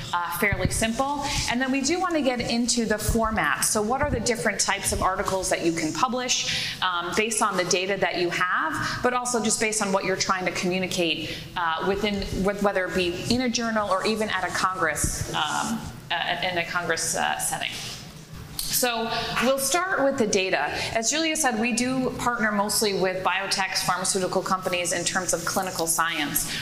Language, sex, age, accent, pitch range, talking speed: English, female, 30-49, American, 175-215 Hz, 190 wpm